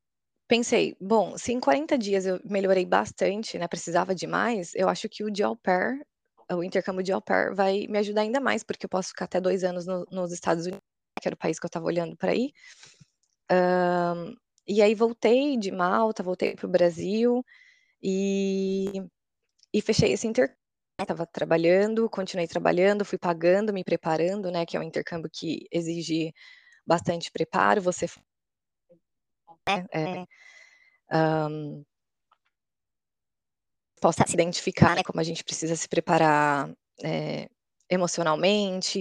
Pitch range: 170-205 Hz